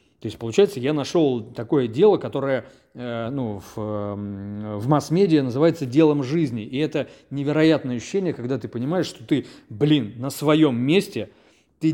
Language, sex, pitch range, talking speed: Russian, male, 120-150 Hz, 150 wpm